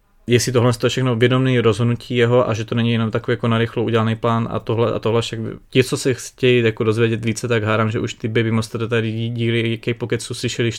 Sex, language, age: male, Czech, 20-39